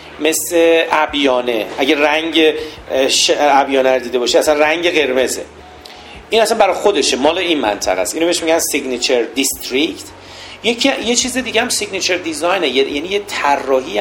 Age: 40-59